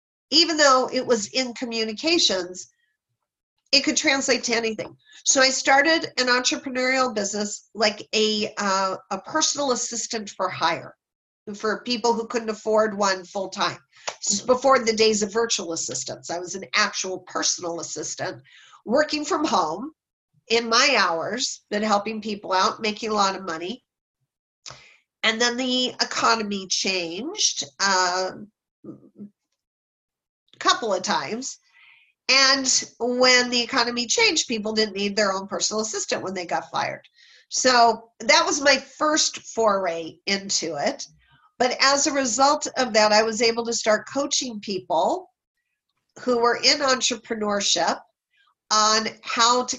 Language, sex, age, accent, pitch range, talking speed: English, female, 40-59, American, 200-255 Hz, 135 wpm